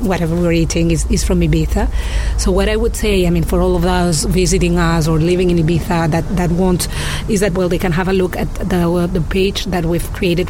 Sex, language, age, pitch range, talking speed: female, English, 30-49, 170-185 Hz, 245 wpm